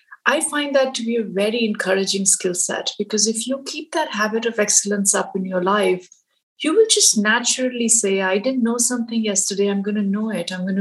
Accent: Indian